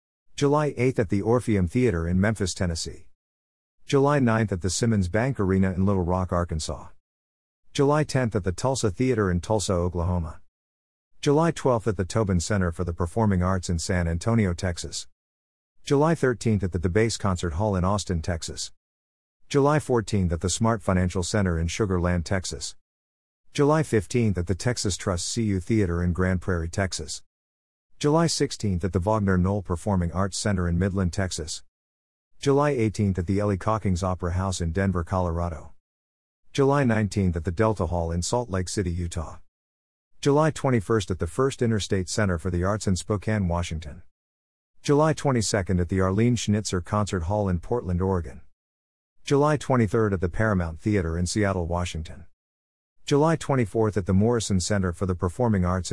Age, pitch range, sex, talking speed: 50-69, 85-110 Hz, male, 165 wpm